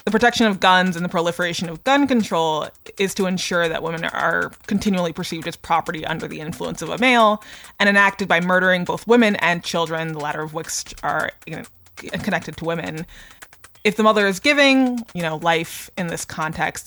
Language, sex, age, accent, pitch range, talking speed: English, female, 20-39, American, 165-200 Hz, 190 wpm